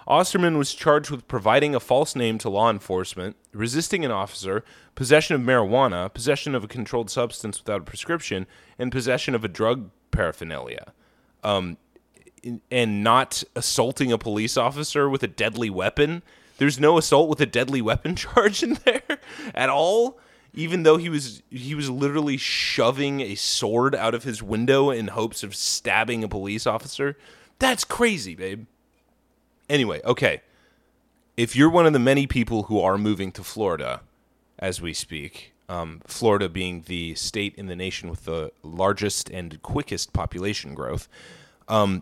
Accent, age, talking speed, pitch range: American, 20-39, 155 wpm, 100-145 Hz